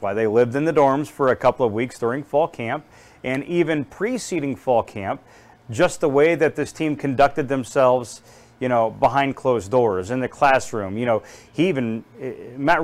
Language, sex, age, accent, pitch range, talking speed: English, male, 40-59, American, 125-175 Hz, 180 wpm